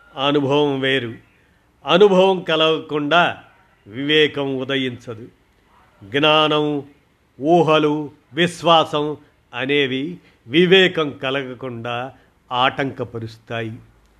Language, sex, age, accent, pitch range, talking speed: Telugu, male, 50-69, native, 125-155 Hz, 55 wpm